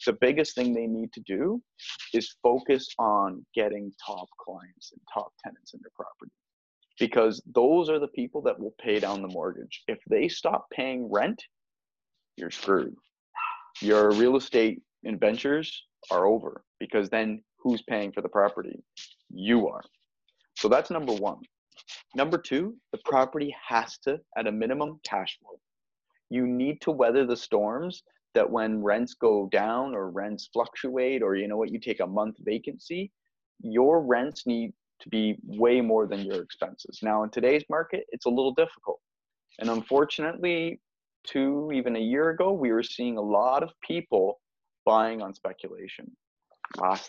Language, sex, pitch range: English, male, 110-155 Hz